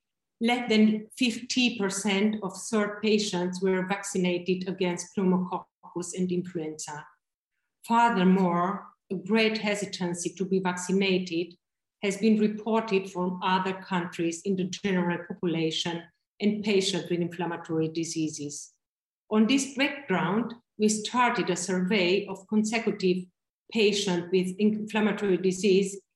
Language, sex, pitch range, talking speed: English, female, 180-215 Hz, 110 wpm